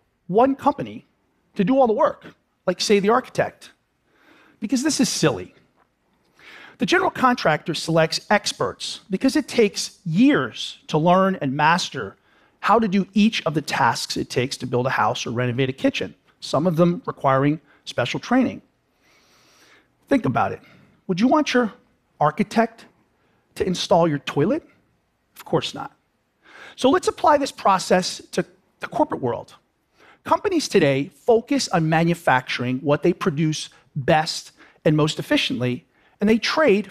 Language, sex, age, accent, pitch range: Japanese, male, 40-59, American, 165-255 Hz